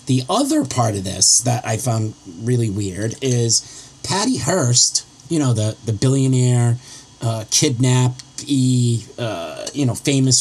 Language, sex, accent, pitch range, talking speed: English, male, American, 120-140 Hz, 140 wpm